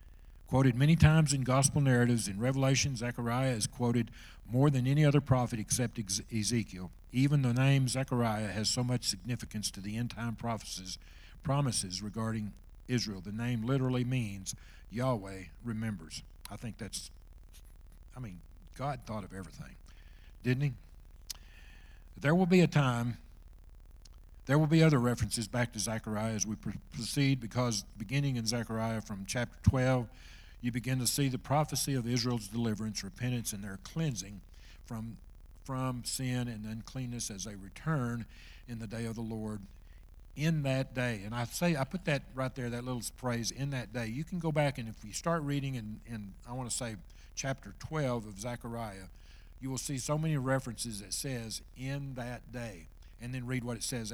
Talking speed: 170 wpm